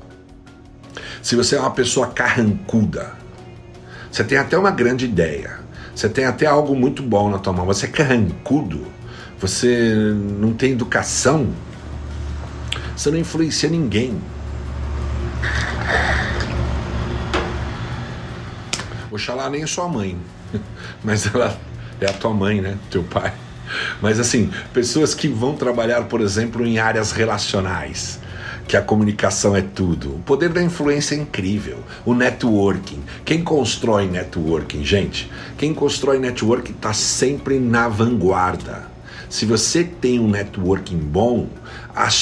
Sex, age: male, 60-79